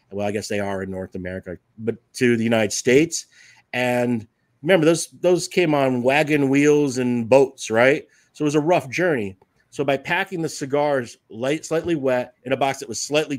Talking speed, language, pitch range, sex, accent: 195 wpm, English, 120-145 Hz, male, American